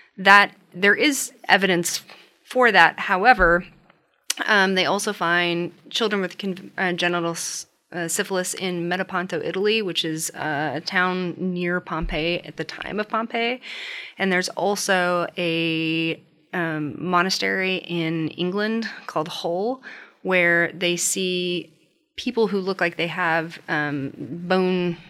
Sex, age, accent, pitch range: female, 30-49, American, 165-190 Hz